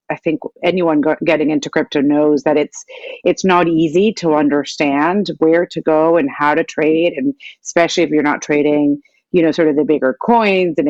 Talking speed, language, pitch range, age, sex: 195 wpm, English, 150-205 Hz, 40-59, female